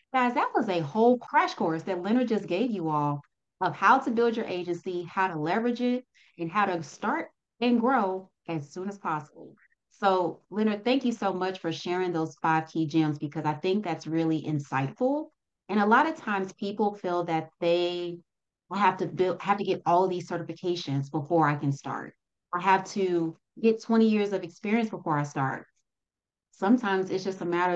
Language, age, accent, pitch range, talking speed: English, 30-49, American, 160-200 Hz, 190 wpm